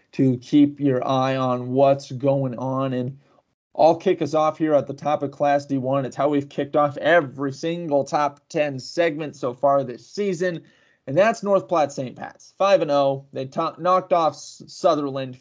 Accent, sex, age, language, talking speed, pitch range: American, male, 20-39, English, 185 wpm, 135-165 Hz